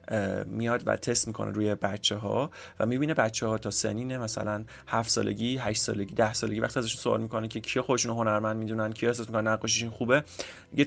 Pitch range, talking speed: 110-135 Hz, 190 wpm